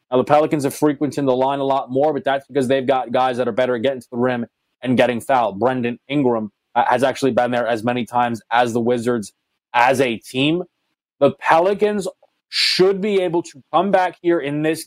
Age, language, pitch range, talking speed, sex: 20-39, English, 130-155 Hz, 215 wpm, male